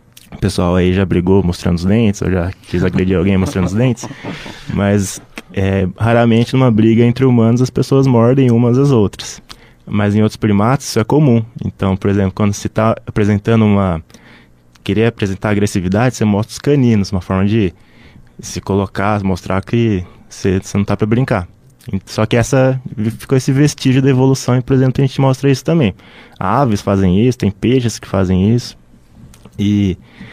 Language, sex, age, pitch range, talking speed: Portuguese, male, 20-39, 100-130 Hz, 175 wpm